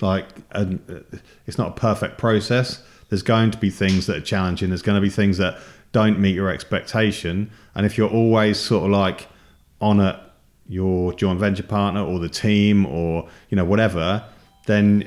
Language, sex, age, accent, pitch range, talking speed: English, male, 40-59, British, 90-105 Hz, 185 wpm